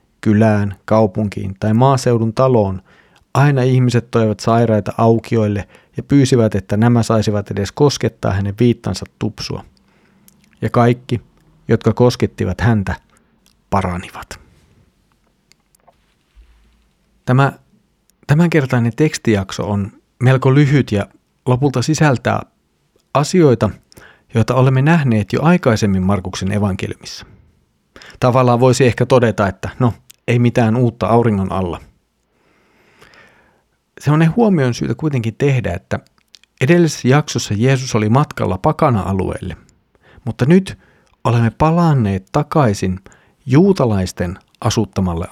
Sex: male